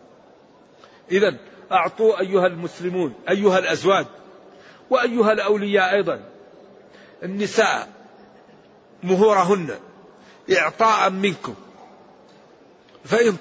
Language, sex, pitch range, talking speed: Arabic, male, 175-200 Hz, 65 wpm